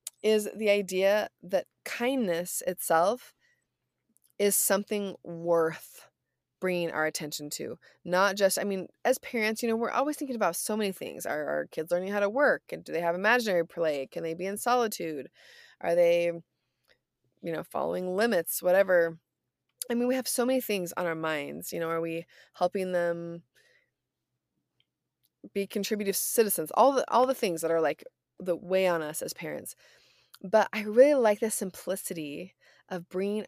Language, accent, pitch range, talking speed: English, American, 165-215 Hz, 165 wpm